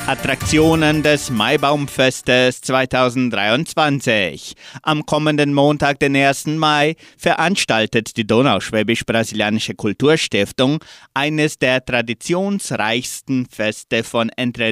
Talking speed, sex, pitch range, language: 80 wpm, male, 115-145 Hz, German